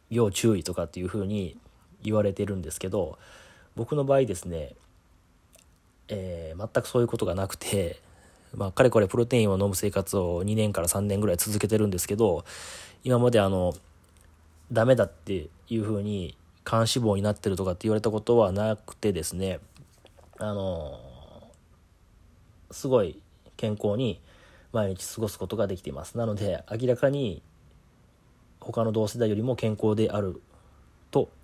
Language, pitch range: Japanese, 90-110 Hz